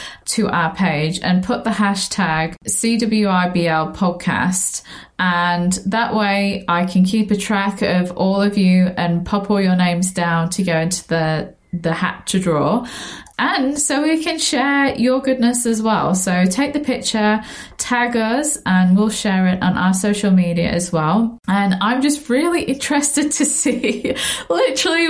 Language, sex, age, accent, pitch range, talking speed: English, female, 20-39, British, 175-225 Hz, 165 wpm